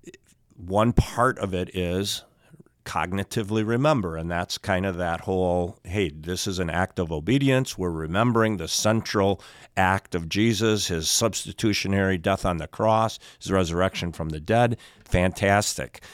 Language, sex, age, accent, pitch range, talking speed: English, male, 50-69, American, 85-105 Hz, 145 wpm